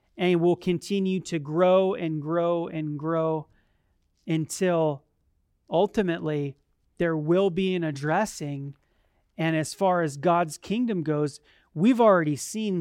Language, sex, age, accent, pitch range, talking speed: English, male, 30-49, American, 160-205 Hz, 120 wpm